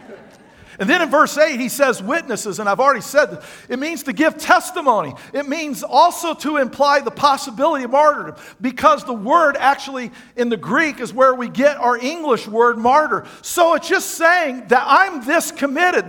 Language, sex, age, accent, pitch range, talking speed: English, male, 50-69, American, 220-295 Hz, 185 wpm